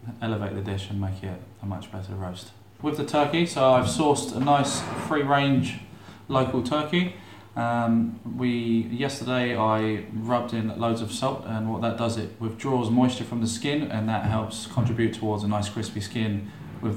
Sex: male